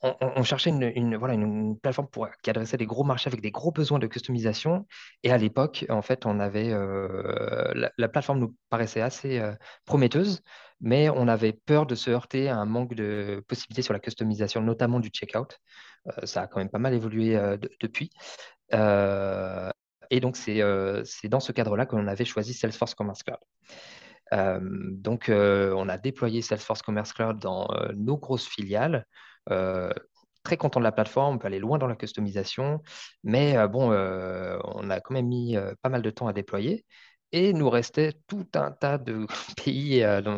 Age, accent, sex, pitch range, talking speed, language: 20-39, French, male, 105-130 Hz, 195 wpm, French